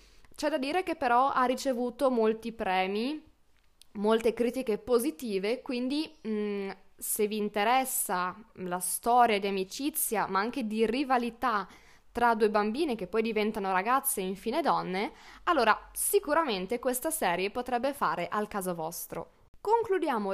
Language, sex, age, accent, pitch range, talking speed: Italian, female, 20-39, native, 205-260 Hz, 130 wpm